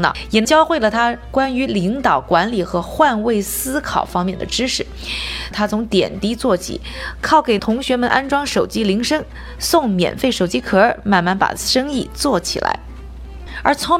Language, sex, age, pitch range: Chinese, female, 20-39, 185-260 Hz